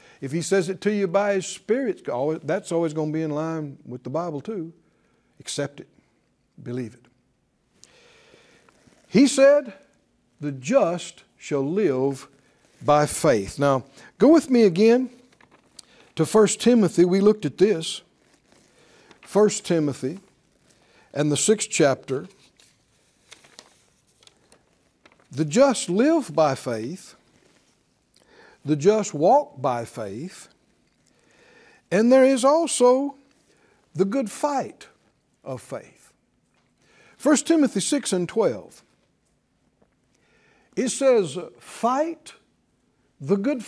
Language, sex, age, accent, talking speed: English, male, 60-79, American, 110 wpm